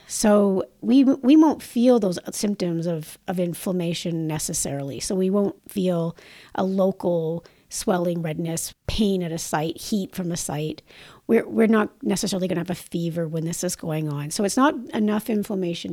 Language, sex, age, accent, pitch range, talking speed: English, female, 50-69, American, 170-220 Hz, 175 wpm